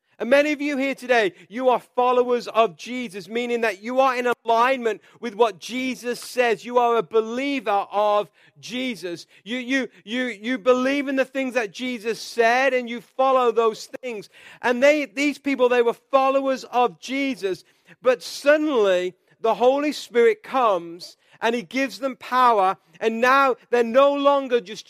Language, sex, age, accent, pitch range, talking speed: English, male, 40-59, British, 205-265 Hz, 165 wpm